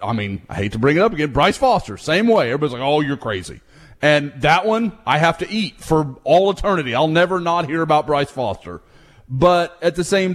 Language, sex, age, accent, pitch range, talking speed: English, male, 30-49, American, 140-195 Hz, 225 wpm